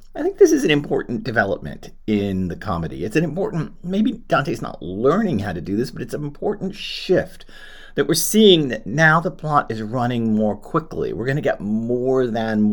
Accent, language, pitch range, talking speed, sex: American, English, 100-150 Hz, 205 wpm, male